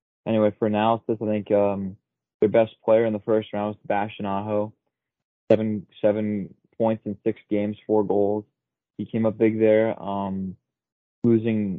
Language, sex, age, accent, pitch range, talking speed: English, male, 20-39, American, 105-115 Hz, 160 wpm